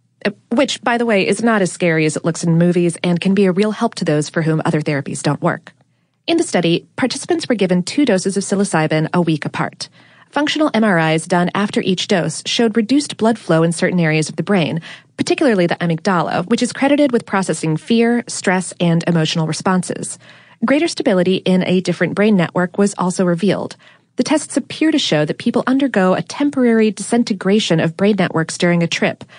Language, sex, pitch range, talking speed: English, female, 170-230 Hz, 195 wpm